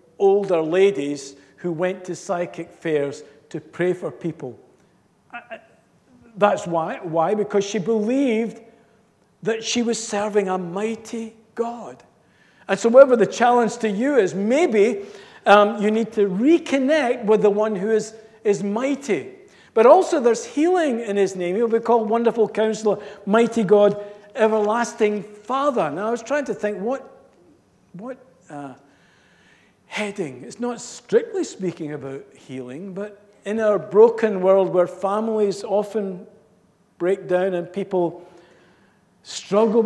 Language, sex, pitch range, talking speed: English, male, 165-225 Hz, 135 wpm